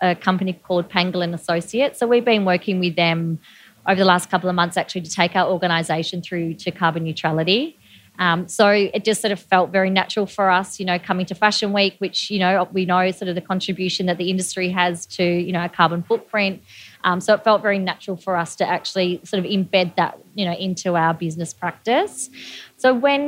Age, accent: 20-39, Australian